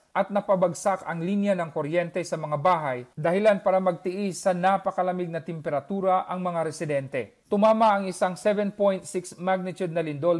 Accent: native